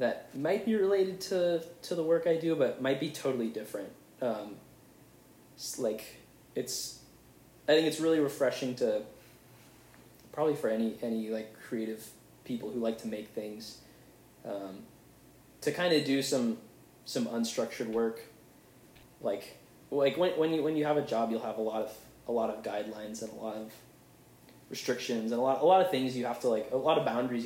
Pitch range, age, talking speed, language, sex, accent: 110-160 Hz, 20-39, 185 wpm, English, male, American